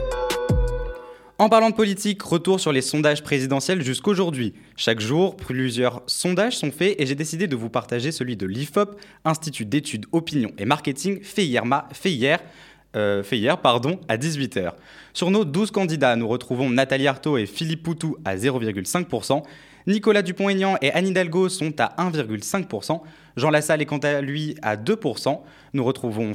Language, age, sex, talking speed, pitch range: French, 20-39, male, 160 wpm, 130-185 Hz